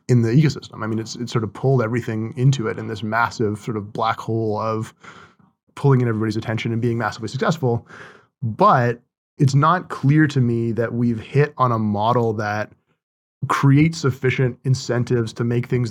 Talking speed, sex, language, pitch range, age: 175 wpm, male, English, 115-135 Hz, 30-49